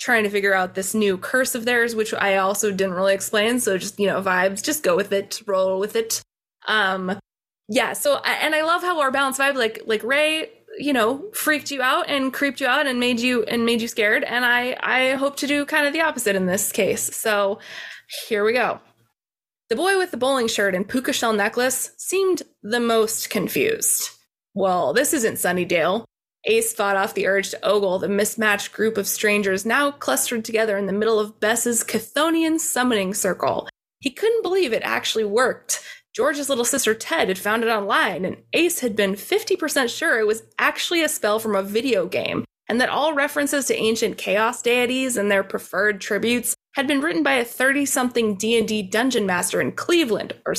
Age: 20-39